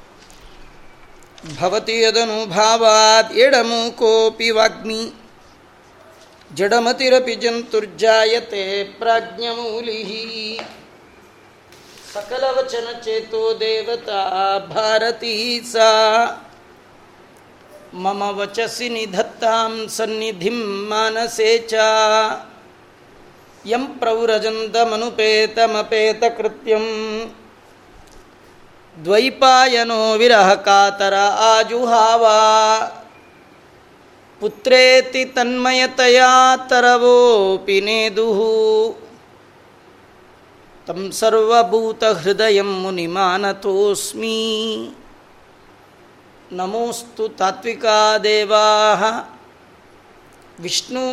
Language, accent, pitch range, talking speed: Kannada, native, 215-235 Hz, 30 wpm